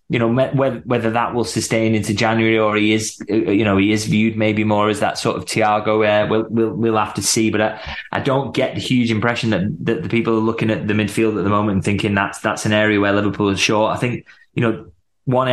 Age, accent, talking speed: 20-39, British, 250 wpm